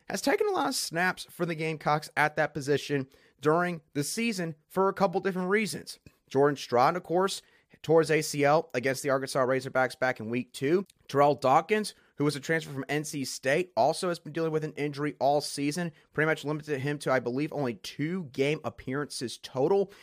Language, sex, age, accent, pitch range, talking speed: English, male, 30-49, American, 135-195 Hz, 195 wpm